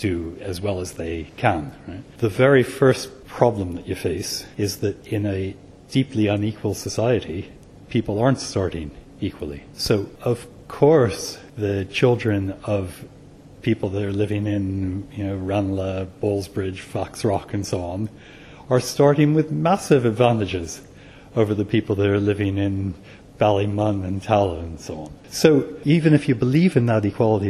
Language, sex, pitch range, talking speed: English, male, 100-125 Hz, 155 wpm